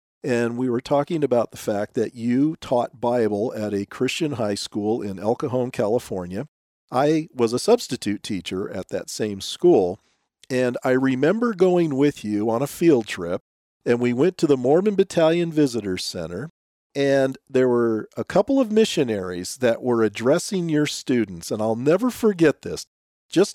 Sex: male